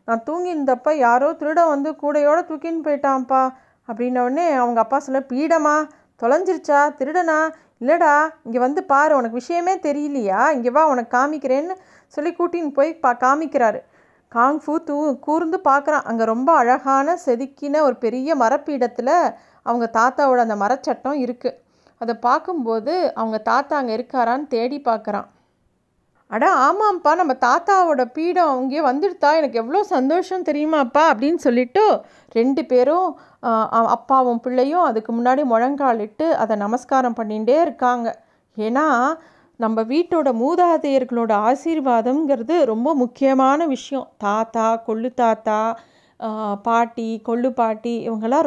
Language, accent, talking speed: Tamil, native, 115 wpm